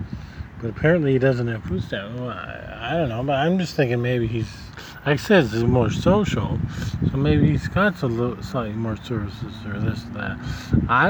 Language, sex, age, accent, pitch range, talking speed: English, male, 40-59, American, 115-150 Hz, 205 wpm